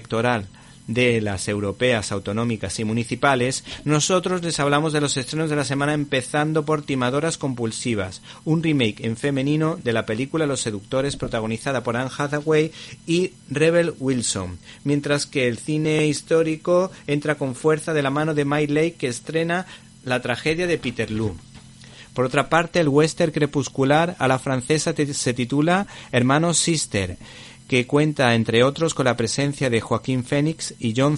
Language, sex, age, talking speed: Spanish, male, 40-59, 155 wpm